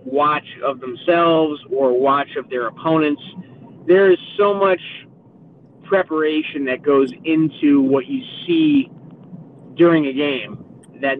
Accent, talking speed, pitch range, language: American, 125 wpm, 140-165 Hz, English